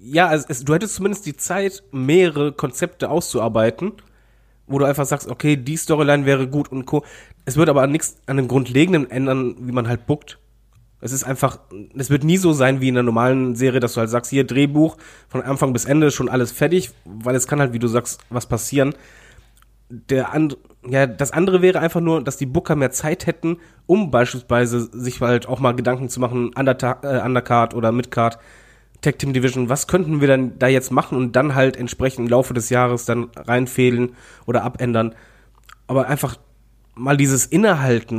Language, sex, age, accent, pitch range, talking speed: German, male, 30-49, German, 120-150 Hz, 195 wpm